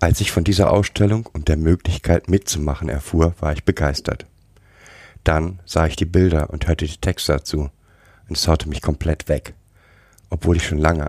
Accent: German